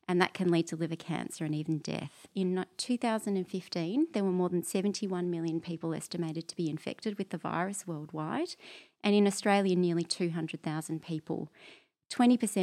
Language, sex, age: English, female, 30-49